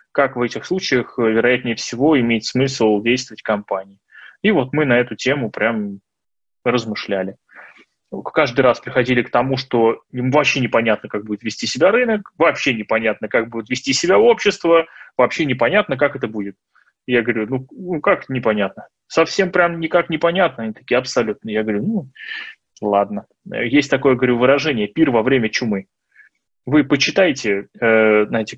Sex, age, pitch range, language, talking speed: male, 20-39, 115-155 Hz, Russian, 150 wpm